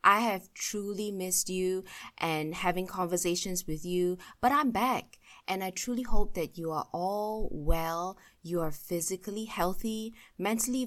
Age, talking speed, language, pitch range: 20-39, 150 wpm, English, 165-210 Hz